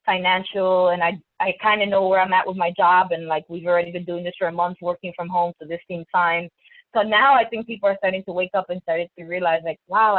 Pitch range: 175-205 Hz